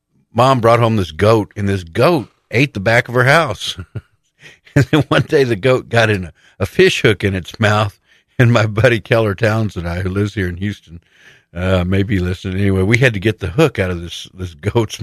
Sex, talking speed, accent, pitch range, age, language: male, 225 wpm, American, 90-110 Hz, 60-79, English